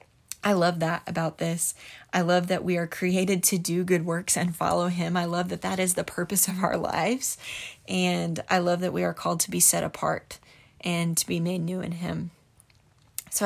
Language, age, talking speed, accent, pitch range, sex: English, 20-39, 210 wpm, American, 170-190 Hz, female